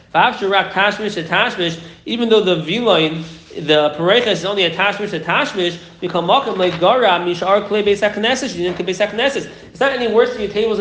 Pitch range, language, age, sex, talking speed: 170-210 Hz, English, 30-49, male, 185 wpm